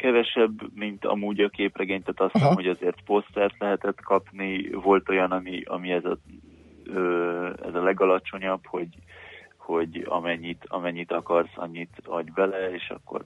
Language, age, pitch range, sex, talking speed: Hungarian, 20-39, 90-100 Hz, male, 145 wpm